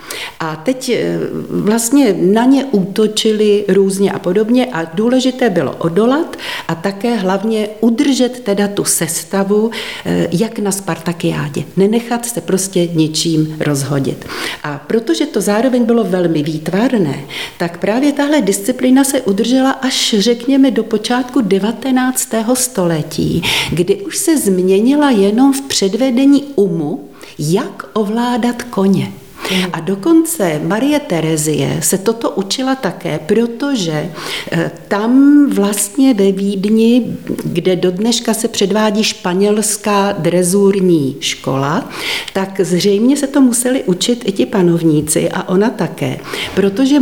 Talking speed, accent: 115 wpm, native